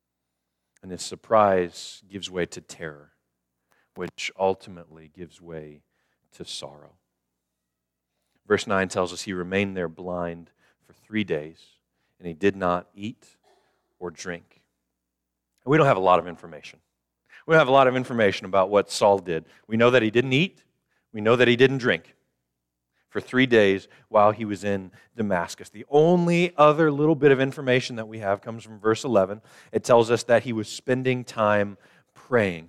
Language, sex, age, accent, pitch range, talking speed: English, male, 40-59, American, 70-115 Hz, 170 wpm